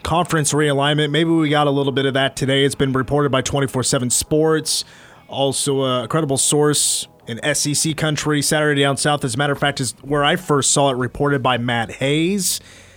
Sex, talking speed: male, 195 wpm